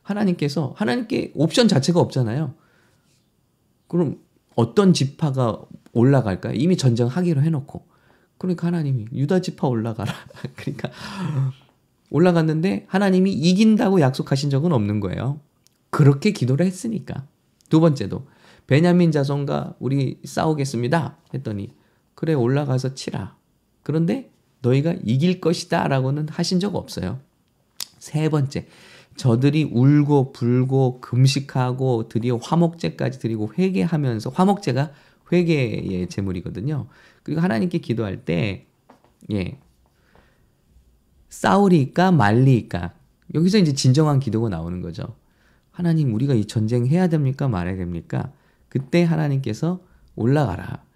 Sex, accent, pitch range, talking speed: male, Korean, 120-170 Hz, 95 wpm